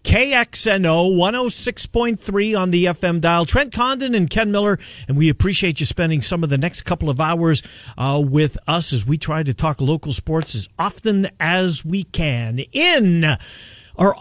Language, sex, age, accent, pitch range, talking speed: English, male, 50-69, American, 130-180 Hz, 170 wpm